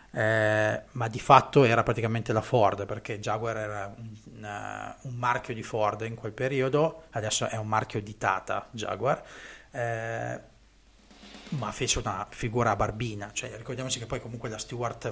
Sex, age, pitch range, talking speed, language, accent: male, 30-49, 115-140 Hz, 150 wpm, Italian, native